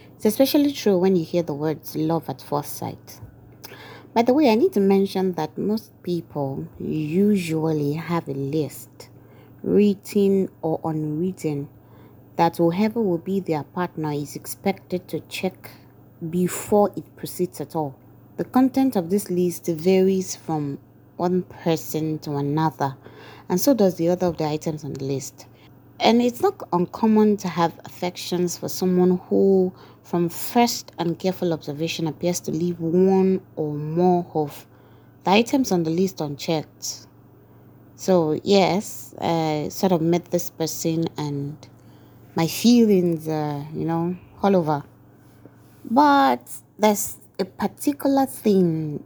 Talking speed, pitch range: 140 wpm, 150-190 Hz